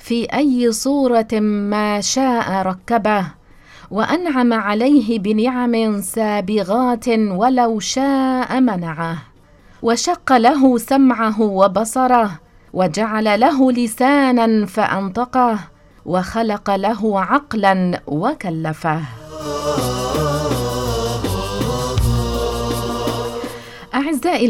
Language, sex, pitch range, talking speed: English, female, 185-250 Hz, 65 wpm